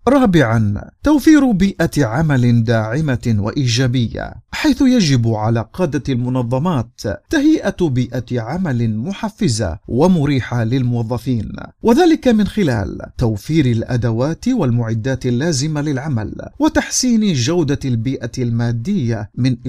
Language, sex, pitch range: Arabic, male, 120-185 Hz